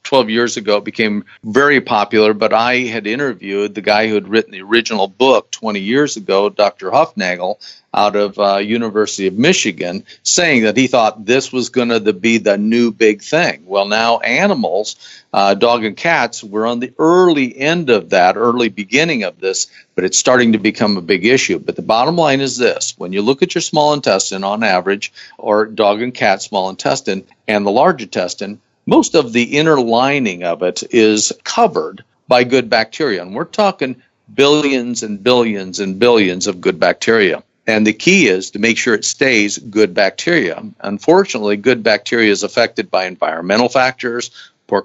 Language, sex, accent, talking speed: English, male, American, 185 wpm